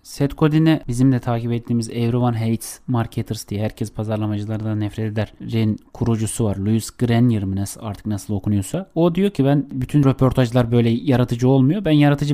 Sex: male